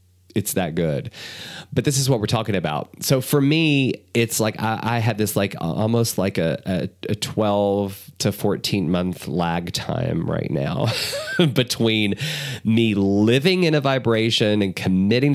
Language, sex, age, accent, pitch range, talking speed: English, male, 30-49, American, 105-145 Hz, 160 wpm